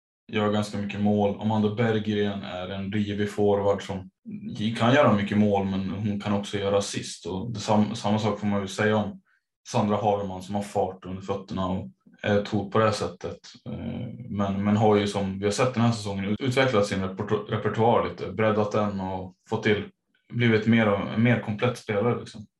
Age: 20-39